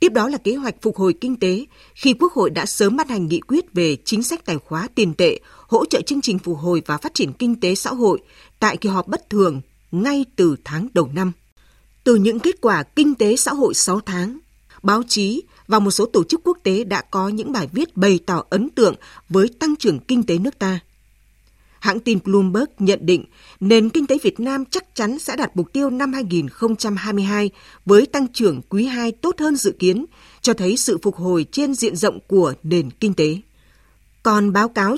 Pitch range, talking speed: 185-250 Hz, 215 wpm